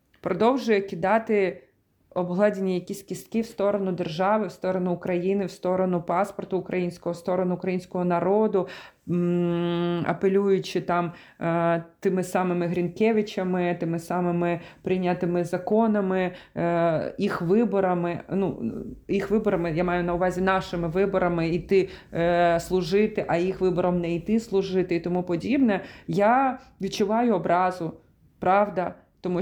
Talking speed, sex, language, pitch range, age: 120 wpm, female, Ukrainian, 175-200 Hz, 30-49